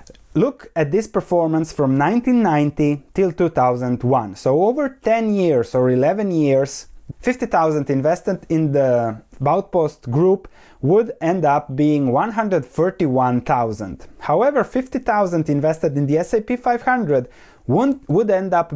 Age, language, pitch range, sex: 20-39, English, 135-195 Hz, male